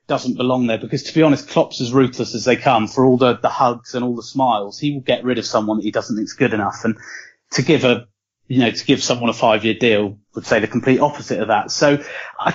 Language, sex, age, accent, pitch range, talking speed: English, male, 30-49, British, 110-140 Hz, 270 wpm